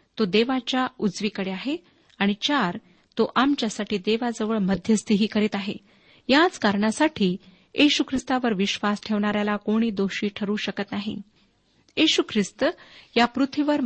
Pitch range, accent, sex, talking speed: 200-260 Hz, native, female, 115 wpm